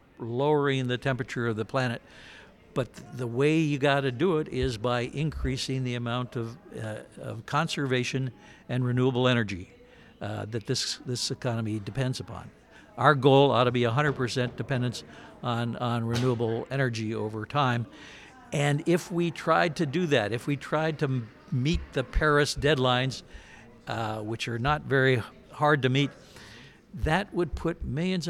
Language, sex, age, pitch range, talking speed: English, male, 60-79, 120-145 Hz, 155 wpm